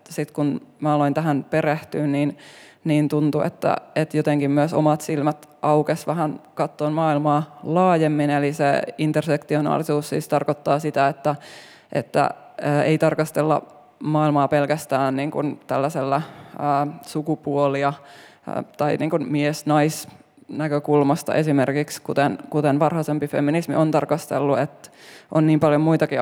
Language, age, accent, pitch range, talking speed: Finnish, 20-39, native, 145-155 Hz, 110 wpm